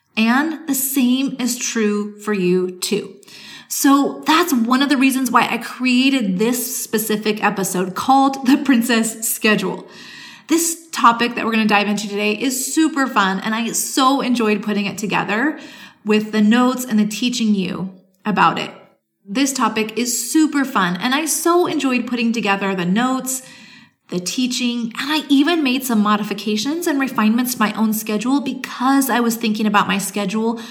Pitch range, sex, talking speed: 210-265 Hz, female, 170 wpm